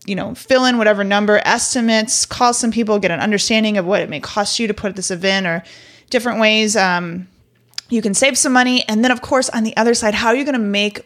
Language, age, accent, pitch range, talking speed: English, 30-49, American, 185-220 Hz, 250 wpm